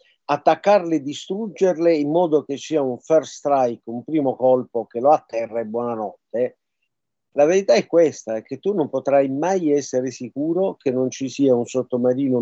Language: Italian